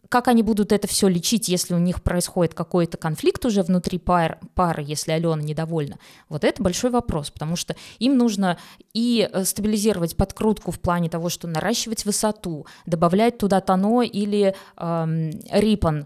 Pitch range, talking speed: 180-215 Hz, 155 wpm